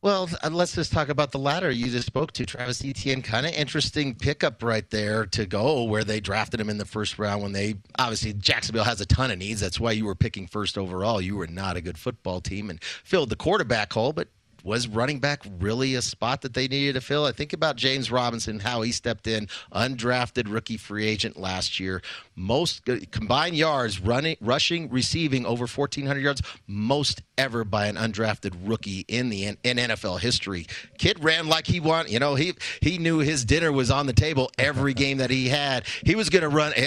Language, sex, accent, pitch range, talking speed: English, male, American, 110-145 Hz, 210 wpm